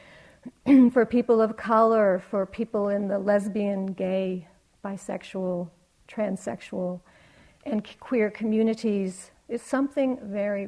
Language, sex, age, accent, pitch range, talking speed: English, female, 50-69, American, 200-245 Hz, 100 wpm